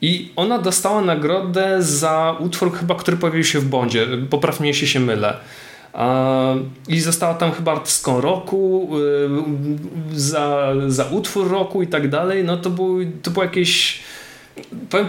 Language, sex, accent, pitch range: Polish, male, native, 130-165 Hz